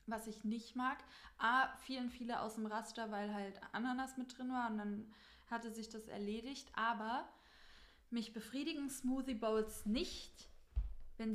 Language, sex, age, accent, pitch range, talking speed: German, female, 20-39, German, 205-235 Hz, 155 wpm